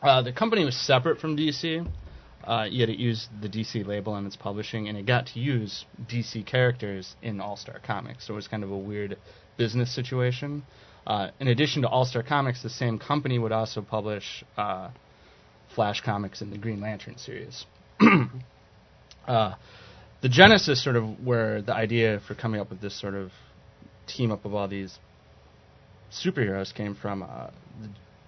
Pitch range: 105-125 Hz